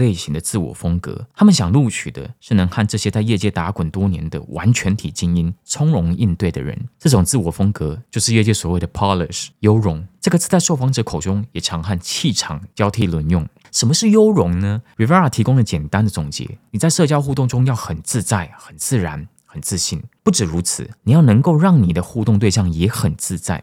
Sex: male